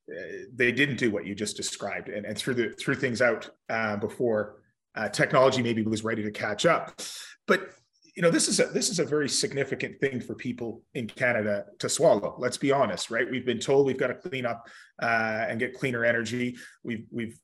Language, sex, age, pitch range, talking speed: English, male, 30-49, 115-140 Hz, 195 wpm